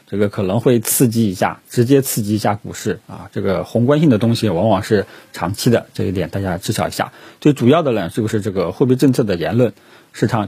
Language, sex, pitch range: Chinese, male, 105-140 Hz